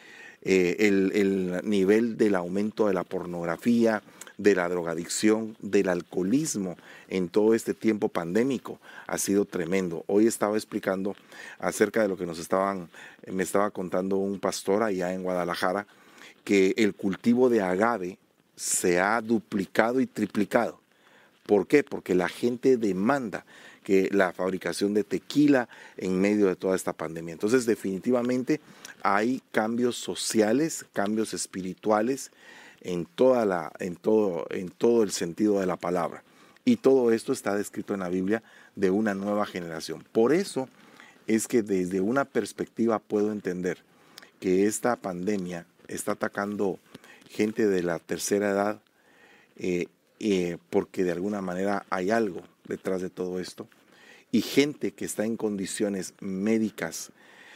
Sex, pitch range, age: male, 95-110 Hz, 40-59